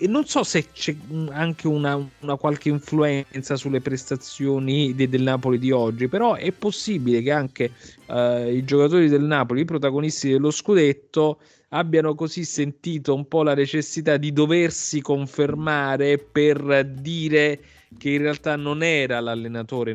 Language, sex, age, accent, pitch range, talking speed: Italian, male, 30-49, native, 115-145 Hz, 140 wpm